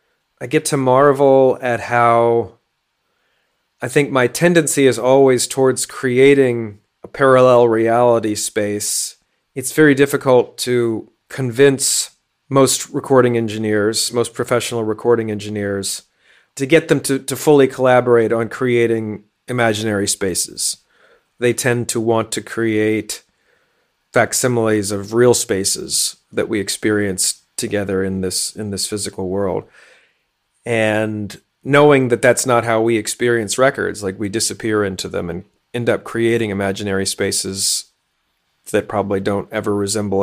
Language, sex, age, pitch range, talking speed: English, male, 40-59, 105-130 Hz, 130 wpm